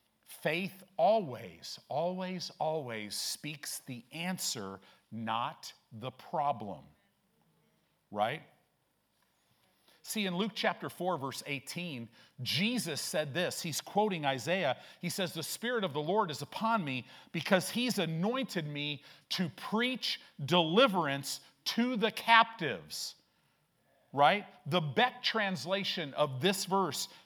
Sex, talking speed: male, 110 wpm